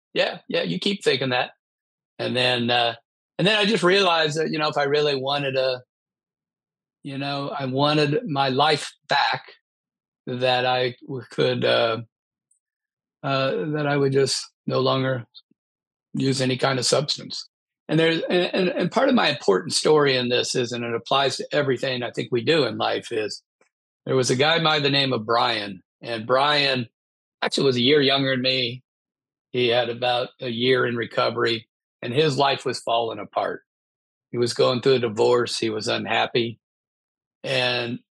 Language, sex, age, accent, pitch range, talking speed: English, male, 50-69, American, 120-145 Hz, 175 wpm